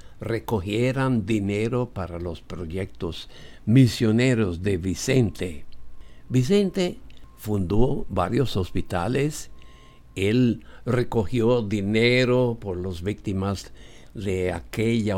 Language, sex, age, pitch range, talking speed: English, male, 60-79, 95-125 Hz, 80 wpm